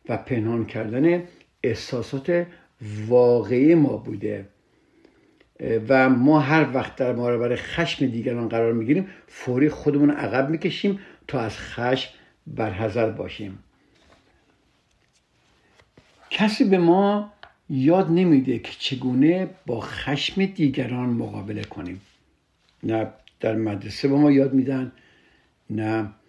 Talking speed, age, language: 105 wpm, 60-79, Persian